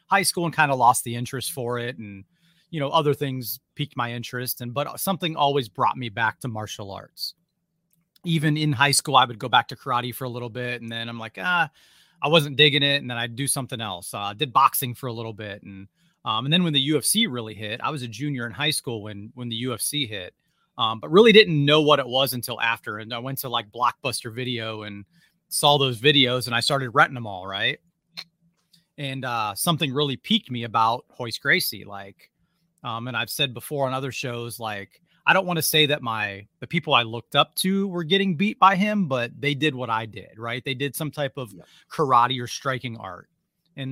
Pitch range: 120-155 Hz